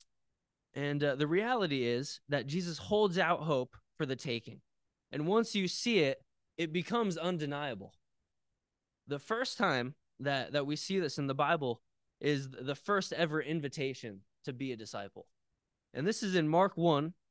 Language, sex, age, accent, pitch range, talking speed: English, male, 20-39, American, 135-190 Hz, 165 wpm